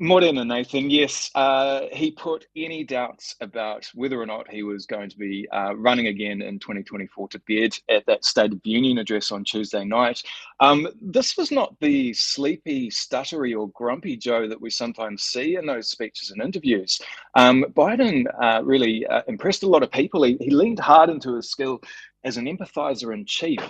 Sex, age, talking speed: male, 20-39, 185 wpm